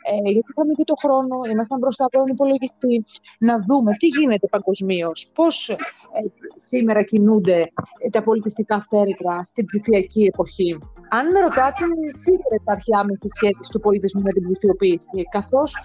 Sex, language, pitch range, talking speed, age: female, Greek, 200-310 Hz, 150 wpm, 30-49